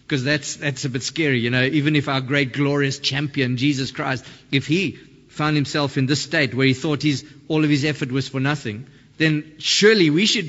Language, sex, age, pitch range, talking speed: English, male, 50-69, 135-175 Hz, 215 wpm